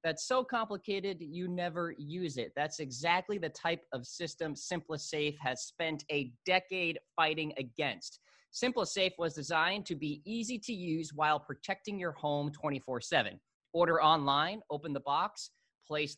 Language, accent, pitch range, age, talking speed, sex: English, American, 145-200 Hz, 20-39, 145 wpm, male